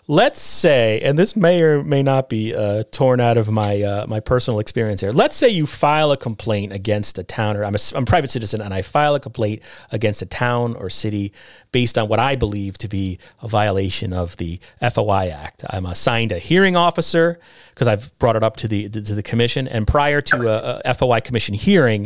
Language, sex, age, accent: English, male, 30-49, American